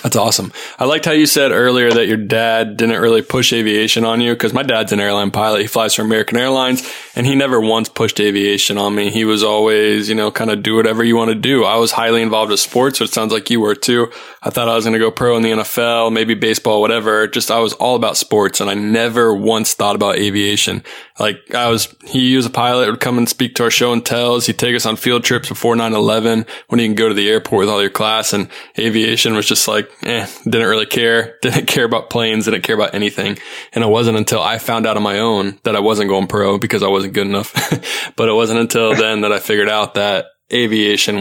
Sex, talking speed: male, 250 wpm